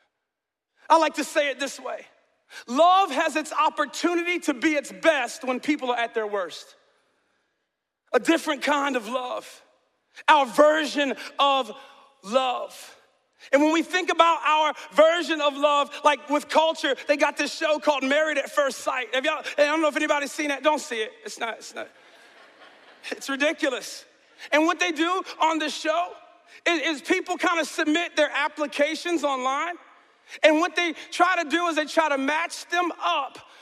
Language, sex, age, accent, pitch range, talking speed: English, male, 40-59, American, 275-325 Hz, 175 wpm